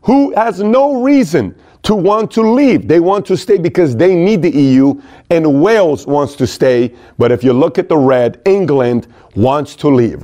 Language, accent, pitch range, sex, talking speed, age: English, American, 135-185 Hz, male, 195 wpm, 40-59